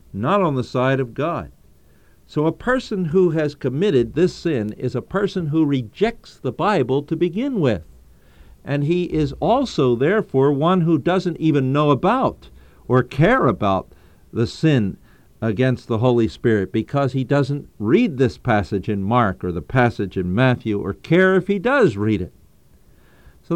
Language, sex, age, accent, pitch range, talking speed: English, male, 50-69, American, 105-160 Hz, 165 wpm